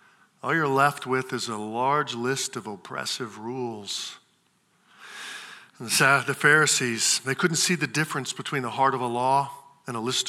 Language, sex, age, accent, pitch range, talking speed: English, male, 50-69, American, 130-200 Hz, 155 wpm